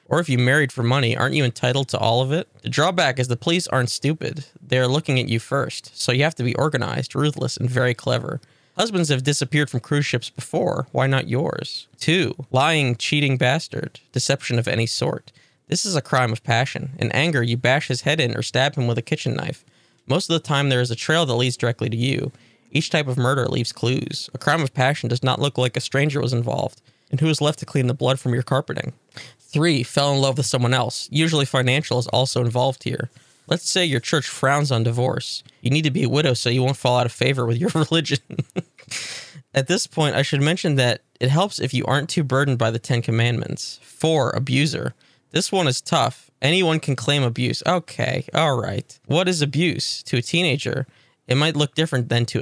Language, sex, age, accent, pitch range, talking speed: English, male, 20-39, American, 125-150 Hz, 225 wpm